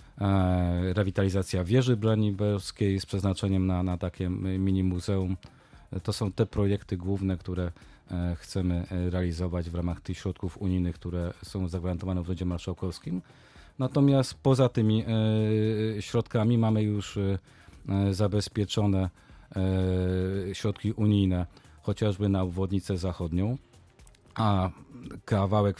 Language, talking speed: Polish, 100 wpm